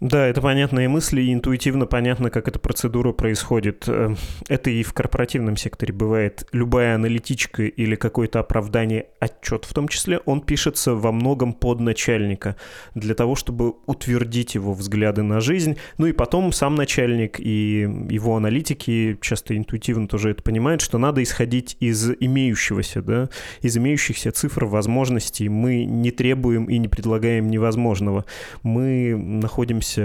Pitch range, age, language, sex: 110-130 Hz, 20-39, Russian, male